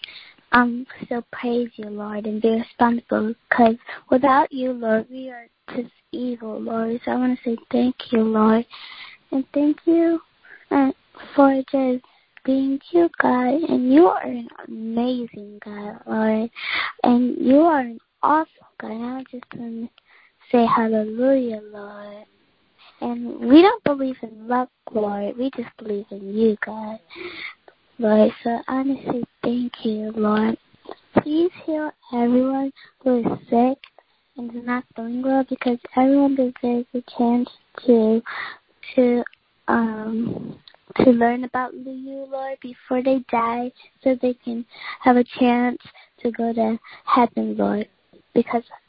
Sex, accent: female, American